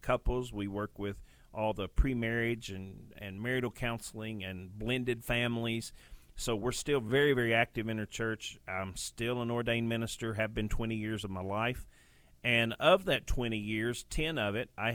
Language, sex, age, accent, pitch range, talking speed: English, male, 40-59, American, 105-125 Hz, 175 wpm